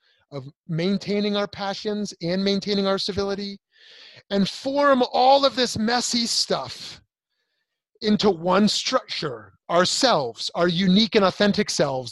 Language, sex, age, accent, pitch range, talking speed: English, male, 30-49, American, 140-200 Hz, 120 wpm